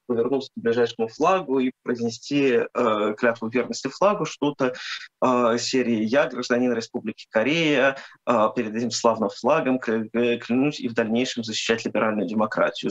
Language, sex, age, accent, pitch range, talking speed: Russian, male, 20-39, native, 120-150 Hz, 135 wpm